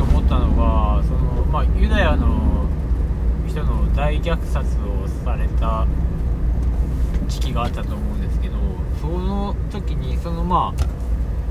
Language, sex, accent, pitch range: Japanese, male, native, 65-75 Hz